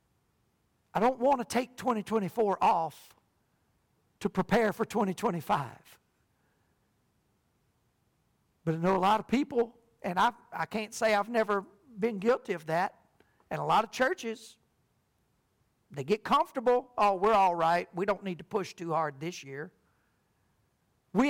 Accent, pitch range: American, 215-315 Hz